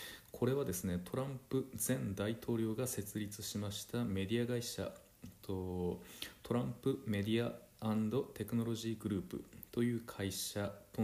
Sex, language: male, Japanese